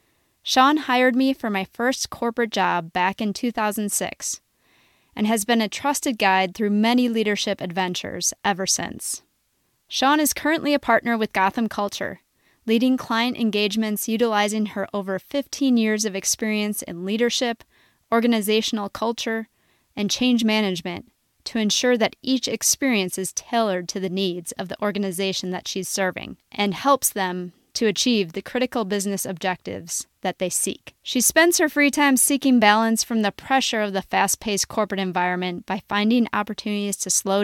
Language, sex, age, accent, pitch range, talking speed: English, female, 20-39, American, 195-240 Hz, 155 wpm